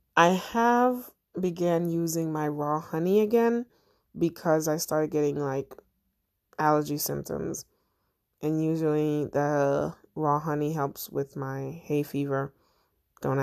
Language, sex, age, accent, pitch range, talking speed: English, female, 20-39, American, 145-185 Hz, 115 wpm